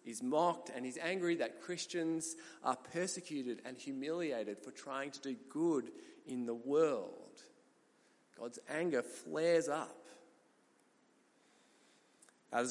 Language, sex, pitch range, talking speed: English, male, 115-160 Hz, 115 wpm